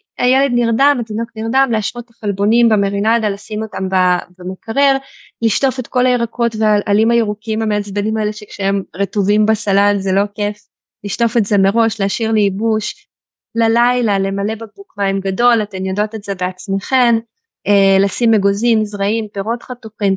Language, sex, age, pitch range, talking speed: Hebrew, female, 20-39, 200-235 Hz, 135 wpm